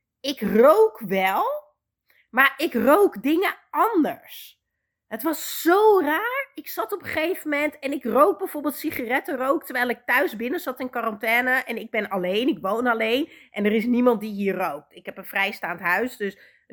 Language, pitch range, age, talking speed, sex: Dutch, 215-285 Hz, 30-49, 185 wpm, female